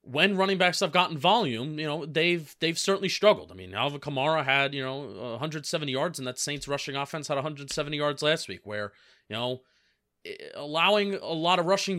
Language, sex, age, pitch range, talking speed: English, male, 30-49, 130-160 Hz, 195 wpm